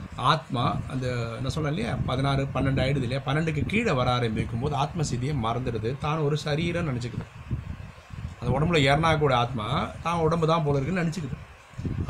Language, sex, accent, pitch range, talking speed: Tamil, male, native, 120-150 Hz, 145 wpm